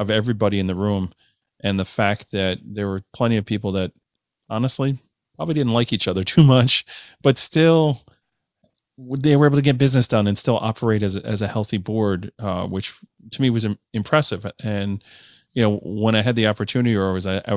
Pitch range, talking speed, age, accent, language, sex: 100-115 Hz, 200 wpm, 30-49, American, English, male